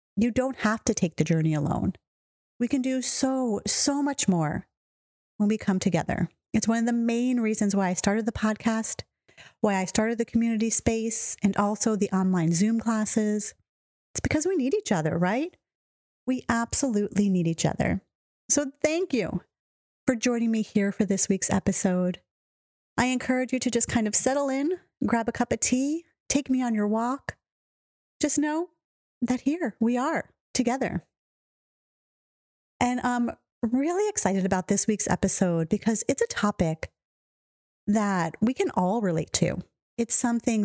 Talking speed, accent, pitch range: 165 wpm, American, 185-250 Hz